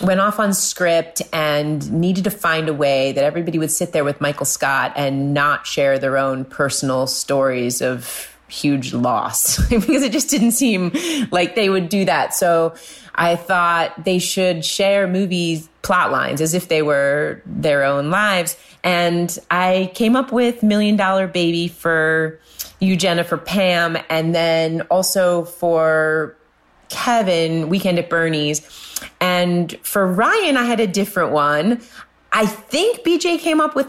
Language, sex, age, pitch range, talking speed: English, female, 30-49, 150-195 Hz, 155 wpm